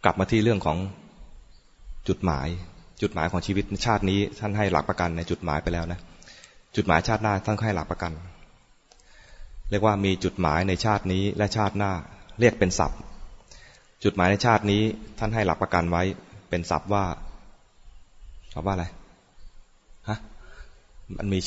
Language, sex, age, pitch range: English, male, 20-39, 85-105 Hz